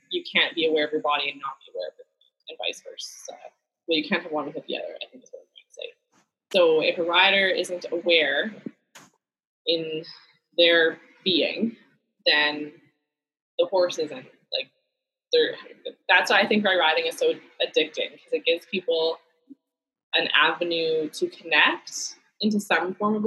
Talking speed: 170 wpm